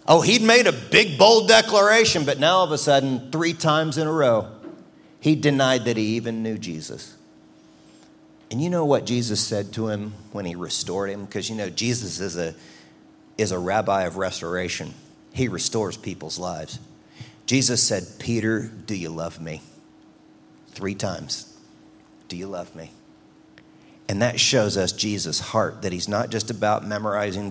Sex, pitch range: male, 95-120 Hz